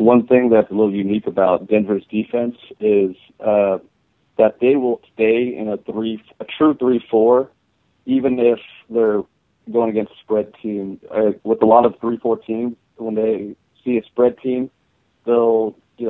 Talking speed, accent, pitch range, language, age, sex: 165 wpm, American, 105-115 Hz, English, 30-49, male